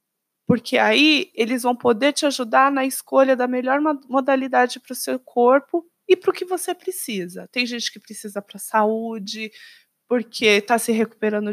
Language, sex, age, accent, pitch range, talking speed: Portuguese, female, 20-39, Brazilian, 210-280 Hz, 170 wpm